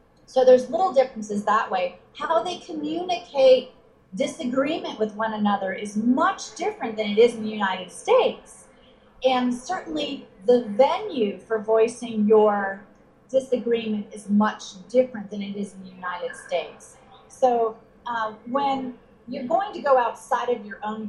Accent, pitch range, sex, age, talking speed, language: American, 210-255 Hz, female, 30-49, 150 wpm, English